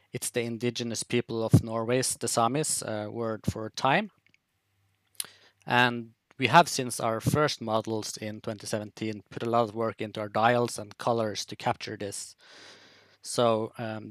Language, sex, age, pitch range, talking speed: English, male, 20-39, 105-120 Hz, 155 wpm